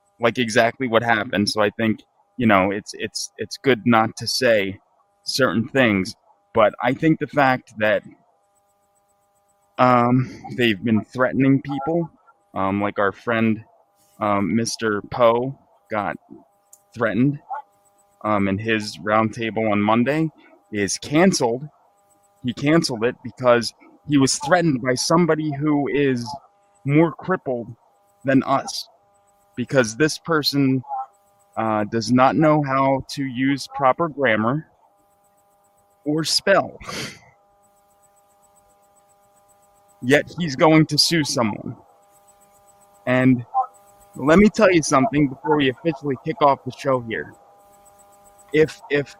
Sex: male